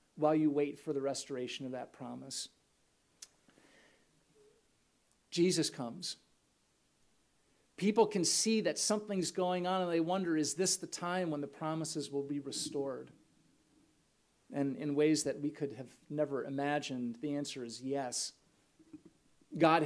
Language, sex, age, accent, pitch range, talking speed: English, male, 40-59, American, 140-165 Hz, 135 wpm